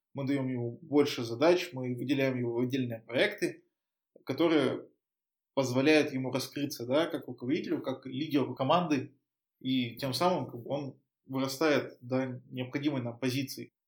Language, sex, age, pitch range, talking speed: Russian, male, 20-39, 125-155 Hz, 130 wpm